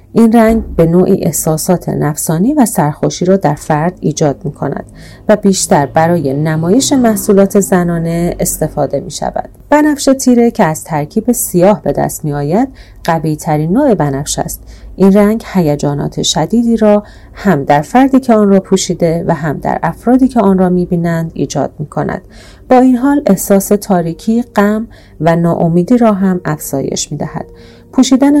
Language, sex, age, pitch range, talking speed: Persian, female, 40-59, 155-215 Hz, 155 wpm